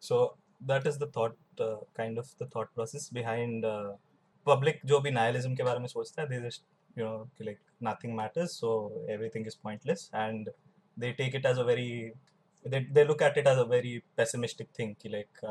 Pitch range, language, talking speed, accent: 115-145 Hz, Hindi, 195 wpm, native